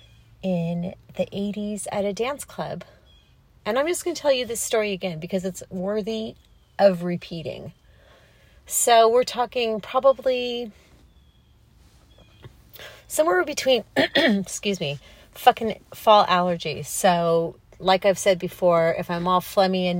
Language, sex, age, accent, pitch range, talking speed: English, female, 30-49, American, 175-215 Hz, 130 wpm